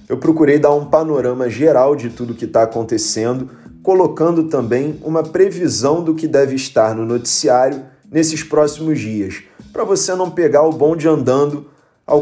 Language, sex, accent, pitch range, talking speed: Portuguese, male, Brazilian, 125-160 Hz, 165 wpm